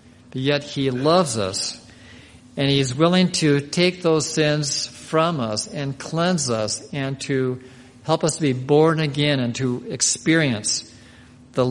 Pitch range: 120-150 Hz